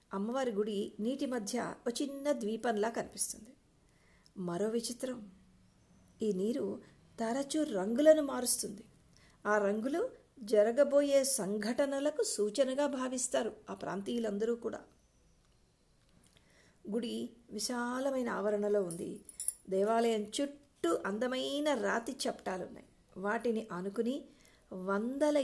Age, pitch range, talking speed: 50-69, 205-255 Hz, 85 wpm